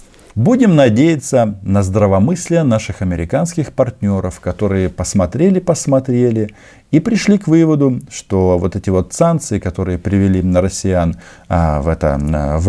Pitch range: 90-130 Hz